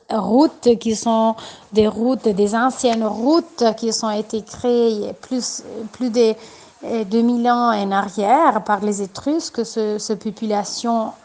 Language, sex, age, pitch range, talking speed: Italian, female, 30-49, 215-245 Hz, 135 wpm